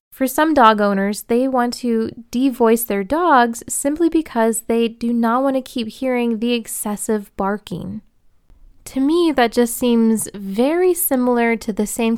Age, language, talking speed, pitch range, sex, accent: 20-39, English, 160 wpm, 205-255 Hz, female, American